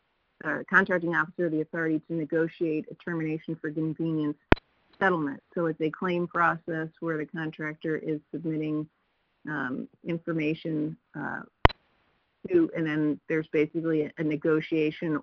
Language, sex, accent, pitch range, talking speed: English, female, American, 150-165 Hz, 125 wpm